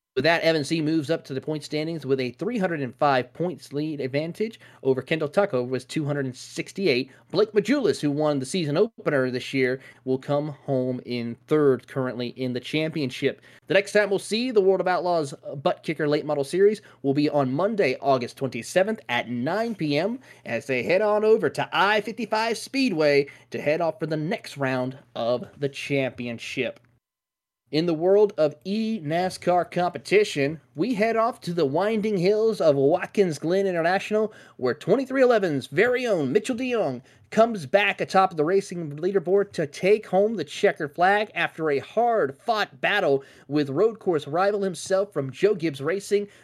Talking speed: 165 wpm